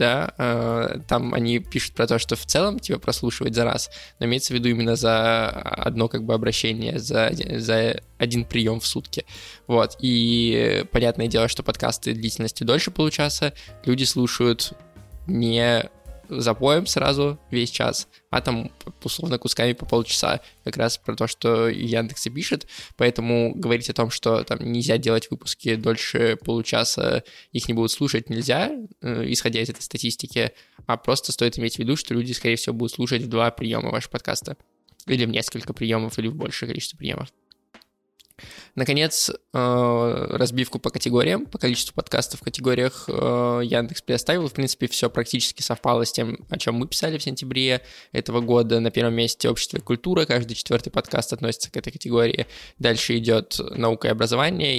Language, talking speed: Russian, 165 wpm